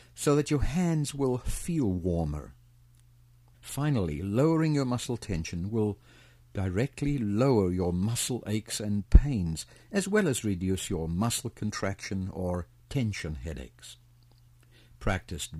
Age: 60-79